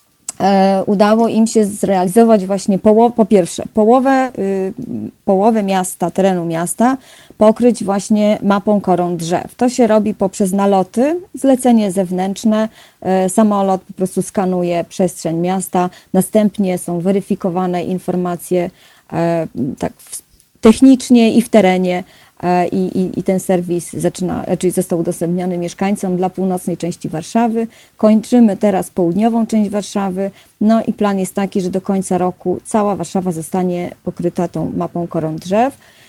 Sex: female